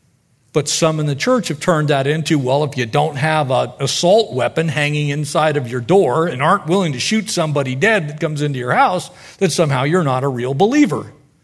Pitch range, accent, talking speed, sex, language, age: 140-200 Hz, American, 215 wpm, male, English, 50-69